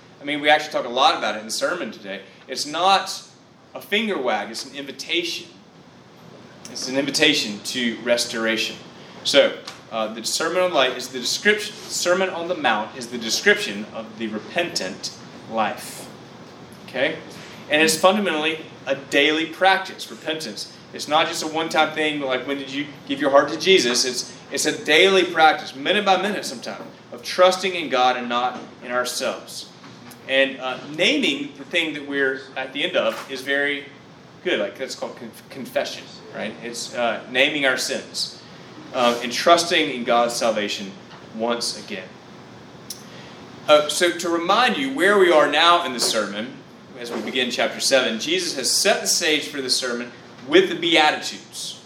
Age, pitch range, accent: 30-49, 120-170 Hz, American